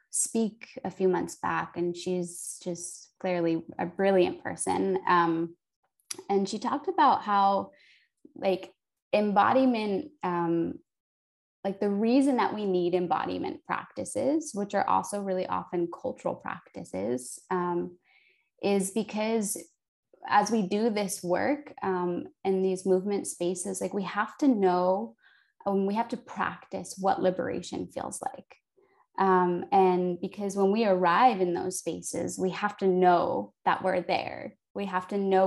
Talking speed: 140 wpm